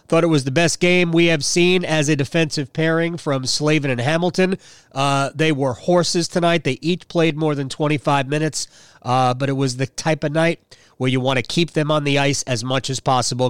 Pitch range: 135-175 Hz